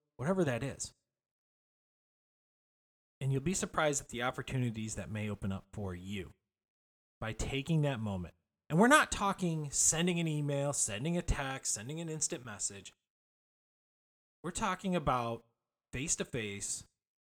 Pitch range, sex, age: 120-170 Hz, male, 20-39